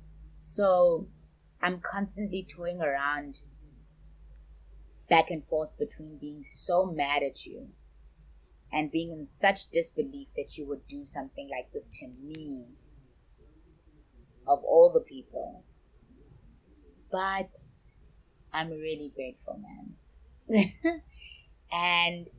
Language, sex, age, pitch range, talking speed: English, female, 20-39, 135-190 Hz, 100 wpm